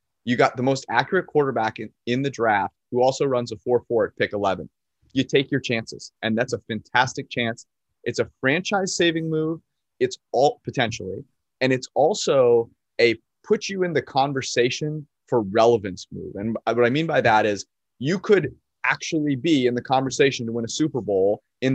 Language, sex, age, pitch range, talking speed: English, male, 30-49, 115-145 Hz, 165 wpm